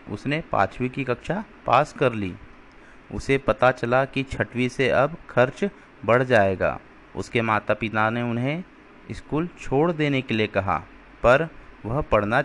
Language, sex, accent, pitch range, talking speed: Hindi, male, native, 115-160 Hz, 150 wpm